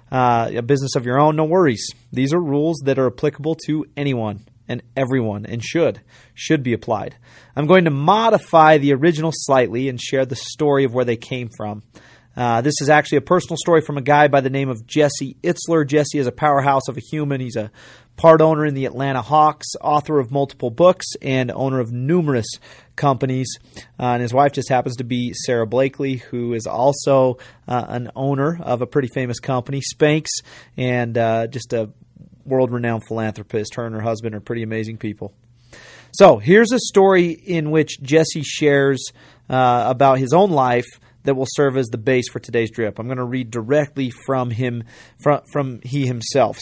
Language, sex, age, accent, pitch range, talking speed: English, male, 30-49, American, 120-155 Hz, 190 wpm